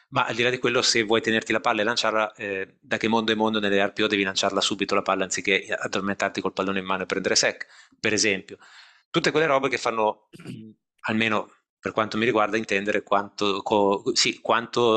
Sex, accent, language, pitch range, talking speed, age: male, native, Italian, 95-110 Hz, 200 wpm, 20-39